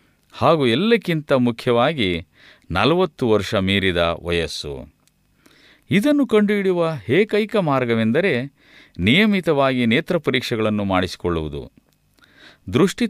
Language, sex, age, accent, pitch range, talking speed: Kannada, male, 50-69, native, 105-175 Hz, 70 wpm